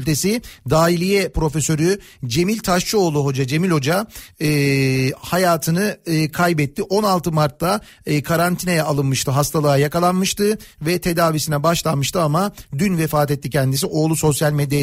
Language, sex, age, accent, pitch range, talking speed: Turkish, male, 40-59, native, 150-175 Hz, 115 wpm